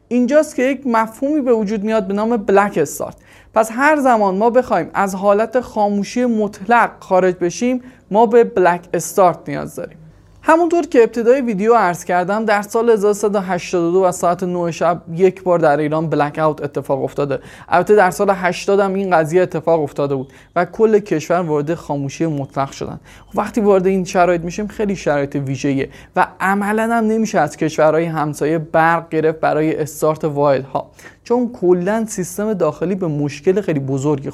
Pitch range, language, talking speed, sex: 160-220 Hz, Persian, 165 wpm, male